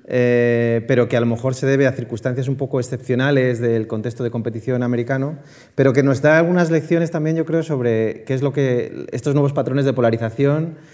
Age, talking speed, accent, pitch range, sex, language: 30-49, 205 wpm, Spanish, 130-155 Hz, male, Spanish